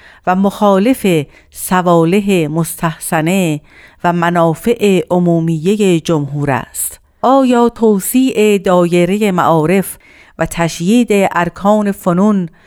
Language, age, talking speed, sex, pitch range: Persian, 50-69, 80 wpm, female, 165-205 Hz